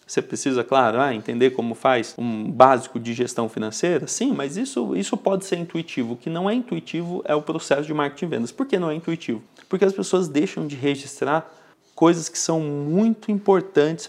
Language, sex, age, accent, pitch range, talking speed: Portuguese, male, 30-49, Brazilian, 130-190 Hz, 190 wpm